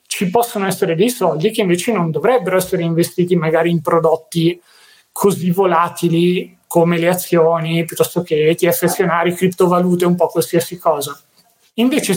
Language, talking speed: Italian, 145 wpm